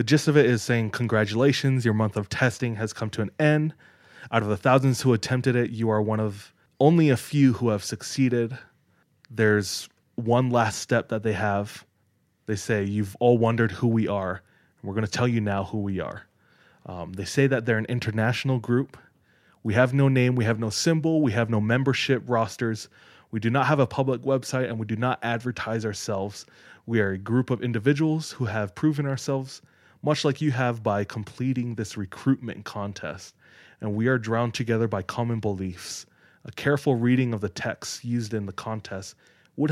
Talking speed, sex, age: 195 wpm, male, 20-39